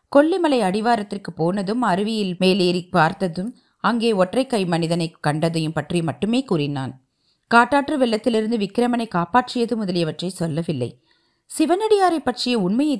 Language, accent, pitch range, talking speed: Tamil, native, 175-255 Hz, 105 wpm